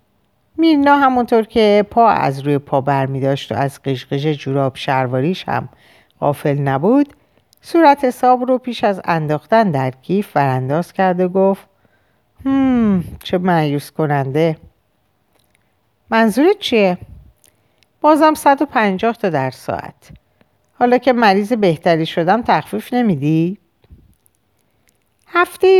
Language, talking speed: Persian, 115 wpm